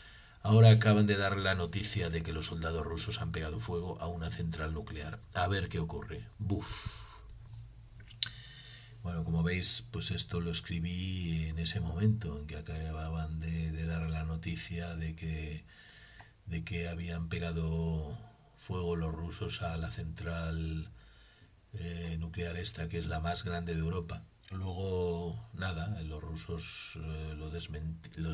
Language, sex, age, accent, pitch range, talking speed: English, male, 40-59, Spanish, 80-100 Hz, 150 wpm